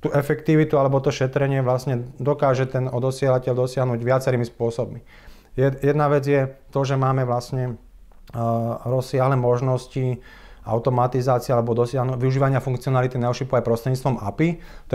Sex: male